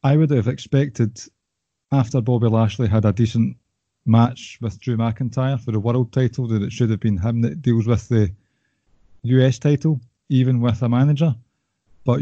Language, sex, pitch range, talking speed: English, male, 115-130 Hz, 170 wpm